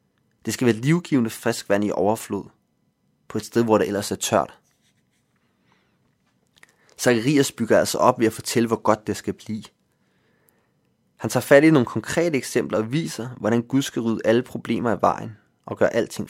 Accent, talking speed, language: native, 175 wpm, Danish